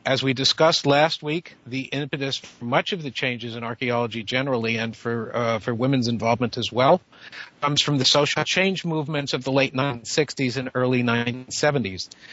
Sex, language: male, English